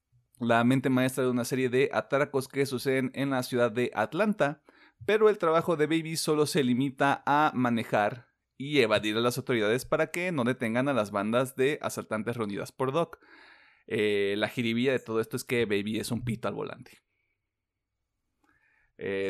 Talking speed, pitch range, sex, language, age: 175 wpm, 120-155 Hz, male, Spanish, 30-49